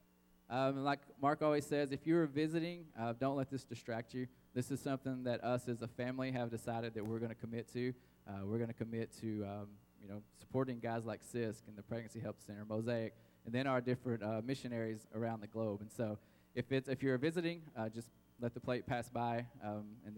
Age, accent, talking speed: 20-39, American, 220 wpm